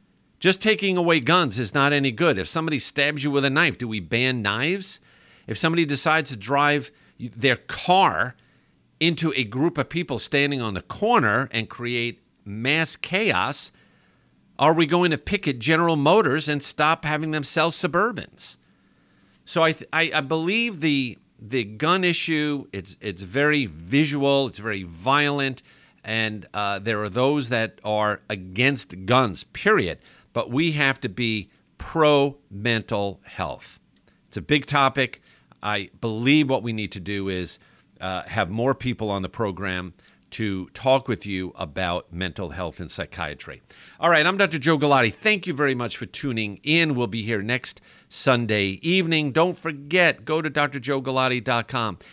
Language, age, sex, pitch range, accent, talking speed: English, 50-69, male, 105-155 Hz, American, 160 wpm